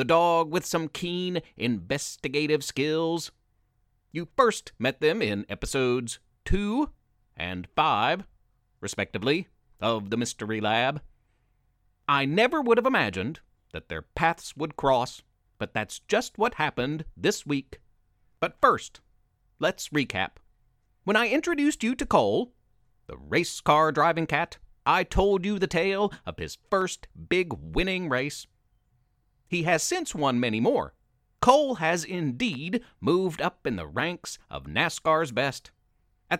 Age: 40-59